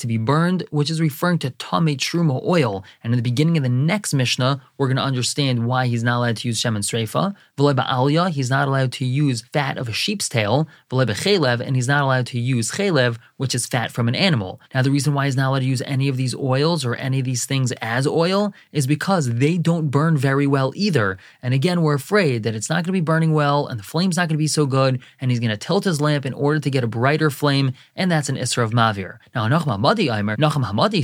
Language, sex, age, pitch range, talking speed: English, male, 20-39, 125-160 Hz, 250 wpm